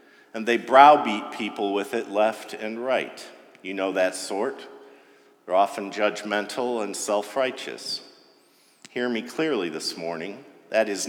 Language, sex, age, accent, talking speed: English, male, 50-69, American, 135 wpm